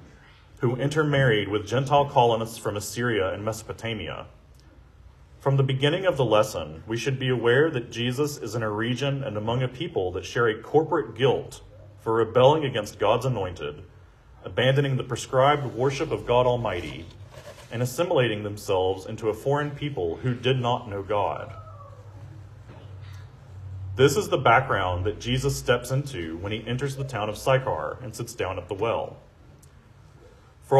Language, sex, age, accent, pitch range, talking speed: English, male, 40-59, American, 105-140 Hz, 155 wpm